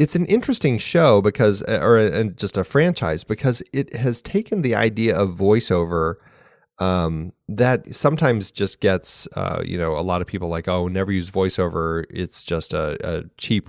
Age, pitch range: 30-49, 90-125 Hz